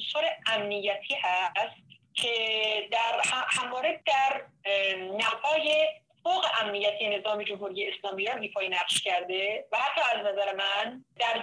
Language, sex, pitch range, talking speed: Persian, female, 200-255 Hz, 120 wpm